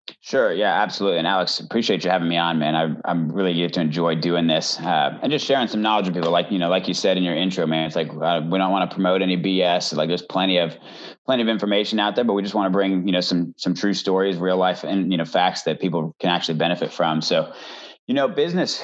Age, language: 30-49, English